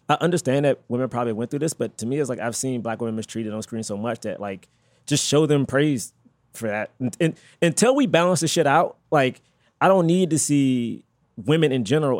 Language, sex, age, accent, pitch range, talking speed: English, male, 20-39, American, 120-165 Hz, 230 wpm